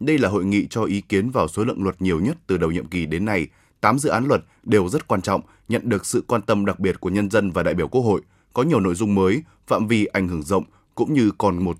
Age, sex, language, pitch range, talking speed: 20-39, male, Vietnamese, 95-125 Hz, 285 wpm